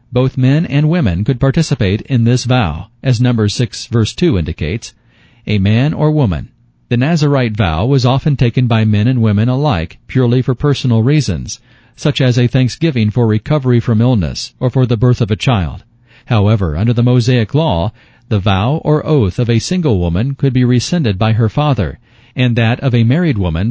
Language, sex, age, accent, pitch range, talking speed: English, male, 40-59, American, 110-135 Hz, 185 wpm